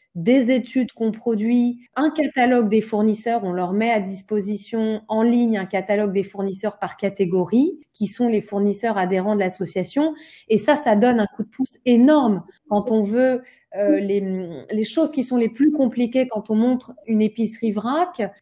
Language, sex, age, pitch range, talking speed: French, female, 30-49, 205-250 Hz, 180 wpm